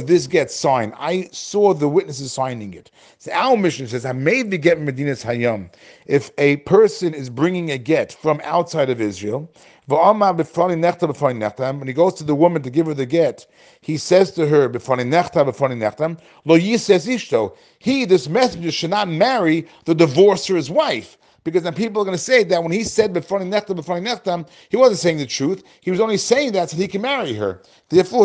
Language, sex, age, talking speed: English, male, 40-59, 185 wpm